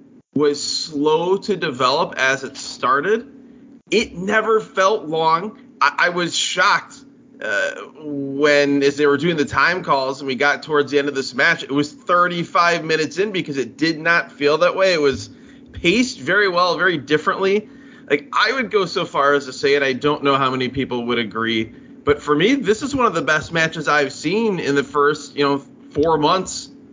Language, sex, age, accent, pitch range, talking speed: English, male, 30-49, American, 135-175 Hz, 200 wpm